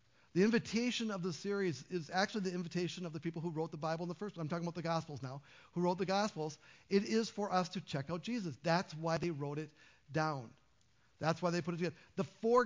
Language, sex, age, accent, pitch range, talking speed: English, male, 50-69, American, 155-195 Hz, 245 wpm